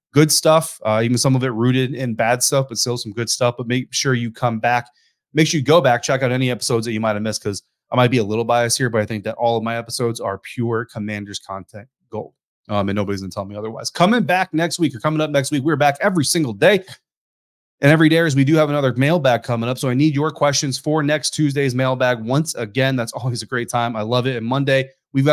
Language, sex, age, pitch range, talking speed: English, male, 30-49, 115-145 Hz, 265 wpm